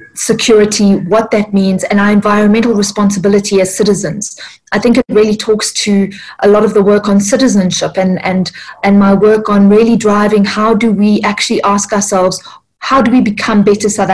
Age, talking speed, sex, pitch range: 30-49, 185 wpm, female, 195-215 Hz